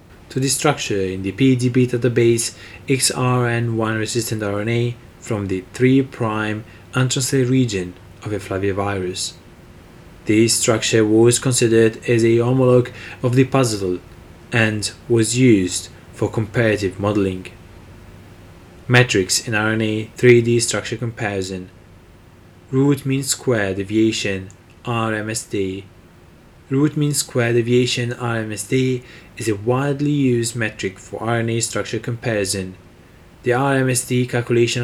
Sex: male